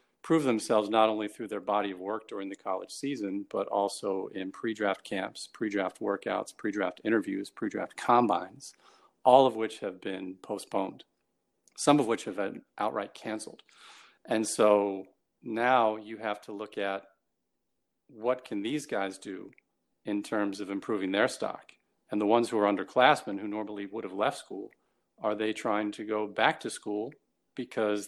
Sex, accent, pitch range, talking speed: male, American, 105-120 Hz, 165 wpm